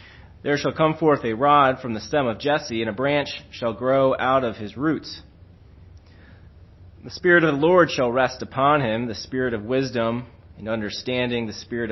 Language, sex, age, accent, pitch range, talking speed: English, male, 30-49, American, 90-115 Hz, 185 wpm